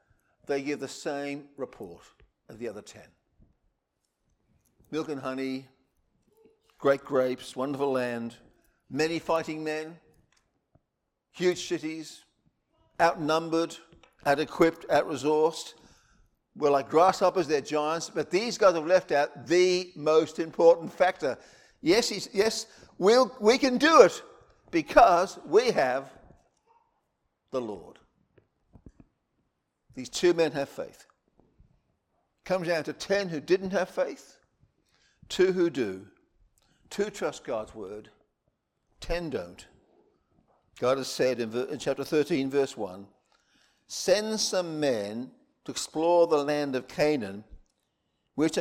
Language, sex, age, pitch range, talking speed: English, male, 50-69, 140-185 Hz, 115 wpm